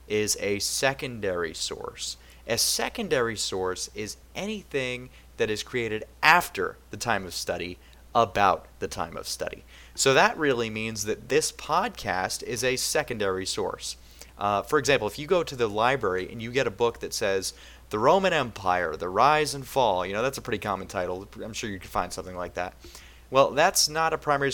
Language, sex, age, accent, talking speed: English, male, 30-49, American, 185 wpm